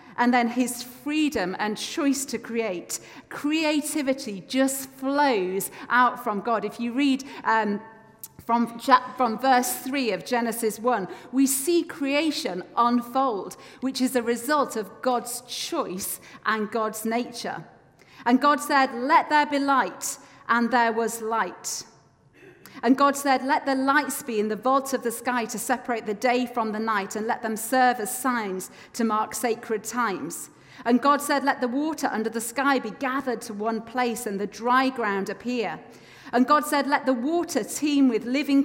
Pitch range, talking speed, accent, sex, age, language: 220-270 Hz, 170 wpm, British, female, 40-59, English